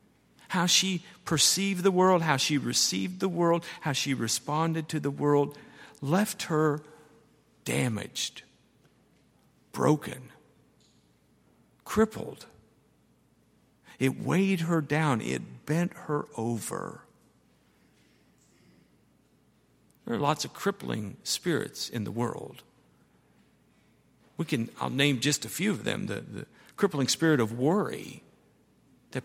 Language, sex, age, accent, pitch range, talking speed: English, male, 50-69, American, 125-170 Hz, 110 wpm